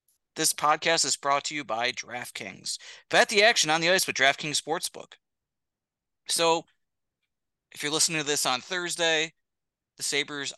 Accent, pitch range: American, 130-165 Hz